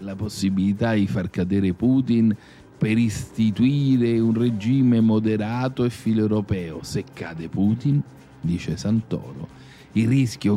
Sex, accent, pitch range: male, native, 95-135 Hz